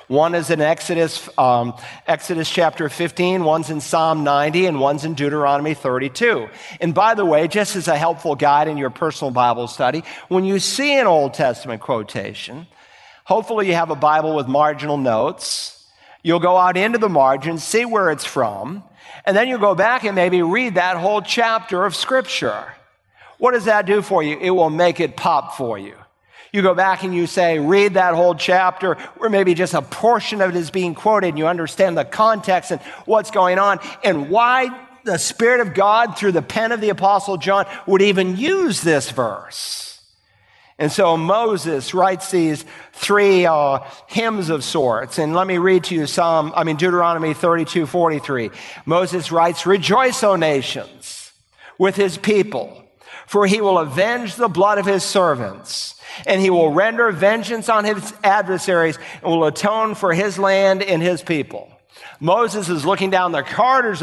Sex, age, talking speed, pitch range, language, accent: male, 50-69, 180 wpm, 160-205 Hz, English, American